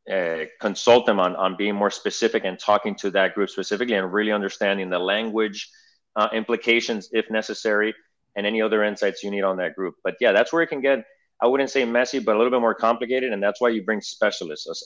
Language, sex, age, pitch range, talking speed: English, male, 30-49, 95-110 Hz, 220 wpm